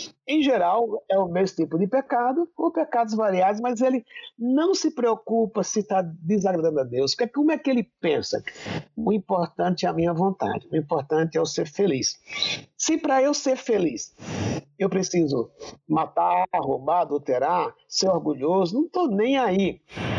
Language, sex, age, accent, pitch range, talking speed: Portuguese, male, 50-69, Brazilian, 175-250 Hz, 165 wpm